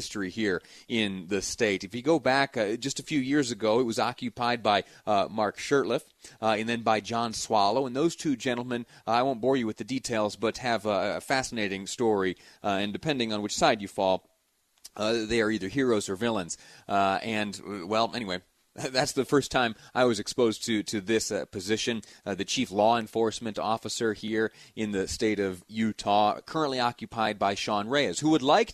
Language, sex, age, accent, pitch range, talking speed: English, male, 30-49, American, 105-135 Hz, 205 wpm